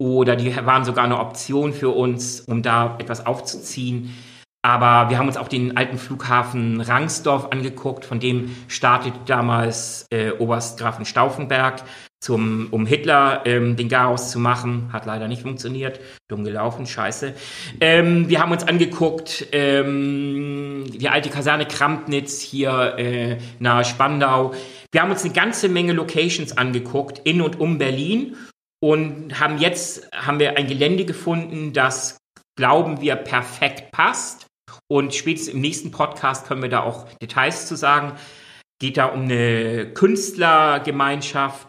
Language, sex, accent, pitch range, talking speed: German, male, German, 120-145 Hz, 145 wpm